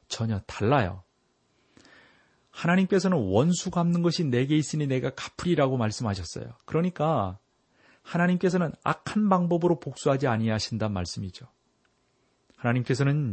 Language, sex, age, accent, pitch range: Korean, male, 40-59, native, 110-155 Hz